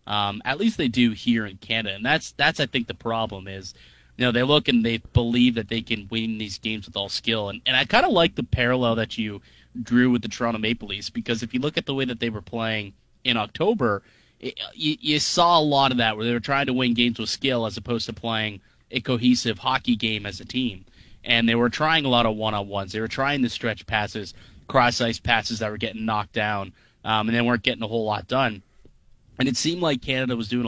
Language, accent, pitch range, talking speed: English, American, 110-125 Hz, 245 wpm